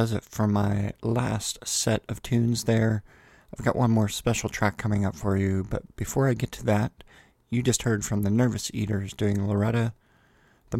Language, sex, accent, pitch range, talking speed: English, male, American, 105-120 Hz, 190 wpm